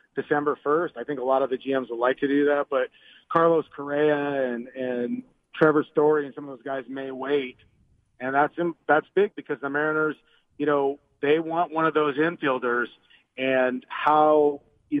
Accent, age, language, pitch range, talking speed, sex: American, 40-59, English, 135-150 Hz, 190 wpm, male